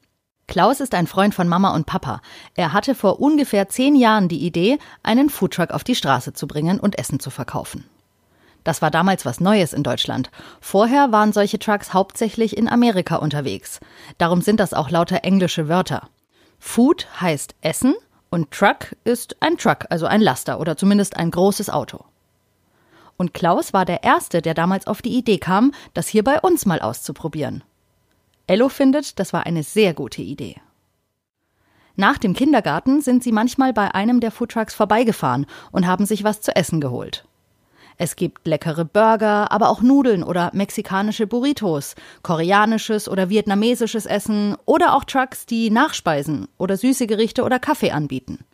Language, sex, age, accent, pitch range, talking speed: German, female, 30-49, German, 165-225 Hz, 165 wpm